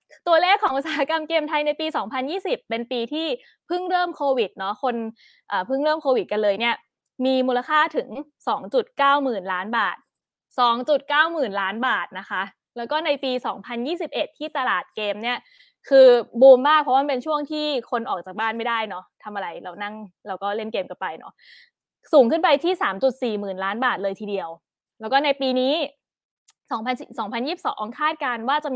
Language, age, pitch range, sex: Thai, 20-39, 220-290 Hz, female